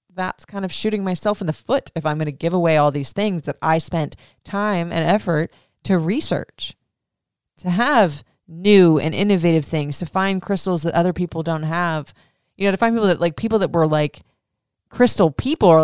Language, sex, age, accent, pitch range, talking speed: English, female, 20-39, American, 160-205 Hz, 200 wpm